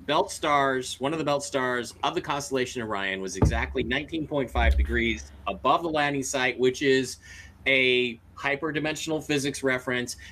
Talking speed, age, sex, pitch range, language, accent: 145 wpm, 30-49, male, 95-145 Hz, English, American